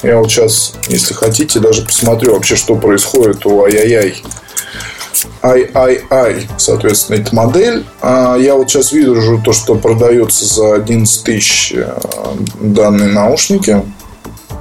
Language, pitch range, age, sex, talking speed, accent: Russian, 110-140 Hz, 20-39, male, 130 wpm, native